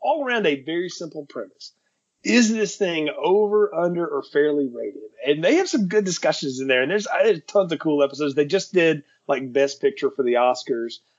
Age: 30-49